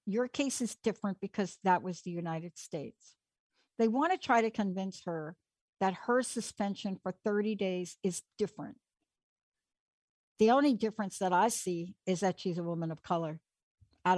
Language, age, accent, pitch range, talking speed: English, 60-79, American, 170-210 Hz, 165 wpm